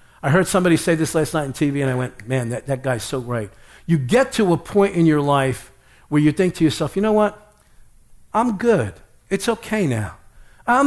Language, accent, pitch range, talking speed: English, American, 135-195 Hz, 220 wpm